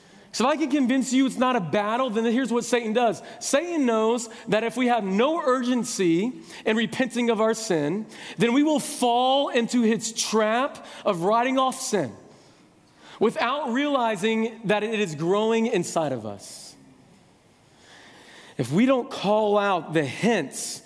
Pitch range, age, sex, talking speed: 165-230 Hz, 40-59, male, 160 wpm